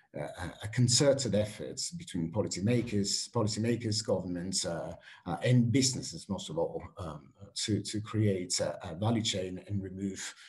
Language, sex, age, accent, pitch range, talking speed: English, male, 50-69, British, 100-125 Hz, 135 wpm